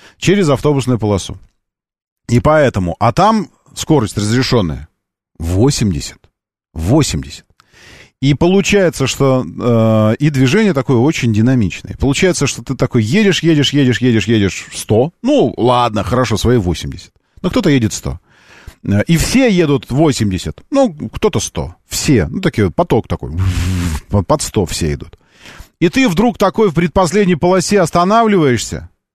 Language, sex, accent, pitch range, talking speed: Russian, male, native, 110-175 Hz, 125 wpm